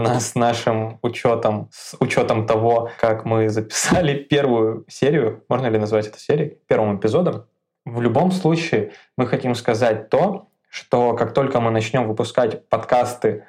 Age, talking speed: 20-39, 140 wpm